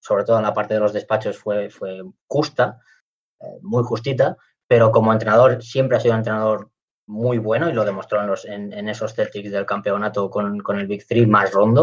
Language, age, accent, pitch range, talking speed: English, 20-39, Spanish, 105-125 Hz, 210 wpm